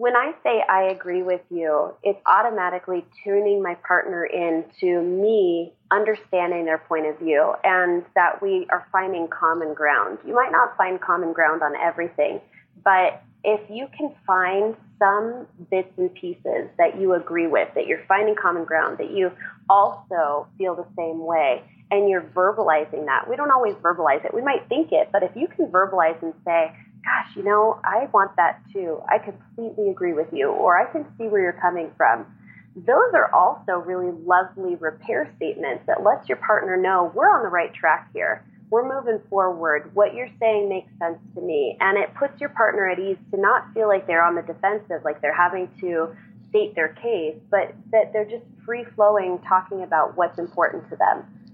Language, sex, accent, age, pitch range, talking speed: English, female, American, 20-39, 170-215 Hz, 185 wpm